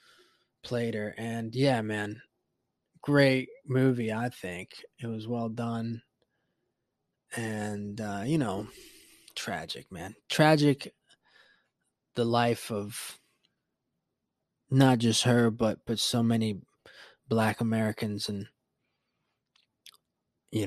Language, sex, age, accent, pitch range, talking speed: English, male, 20-39, American, 110-135 Hz, 100 wpm